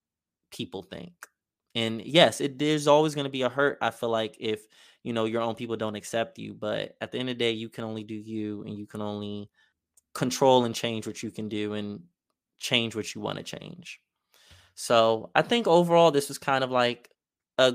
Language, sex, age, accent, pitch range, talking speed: English, male, 20-39, American, 110-130 Hz, 215 wpm